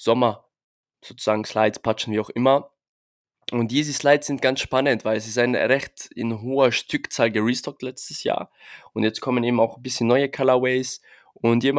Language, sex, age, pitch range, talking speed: German, male, 20-39, 110-125 Hz, 180 wpm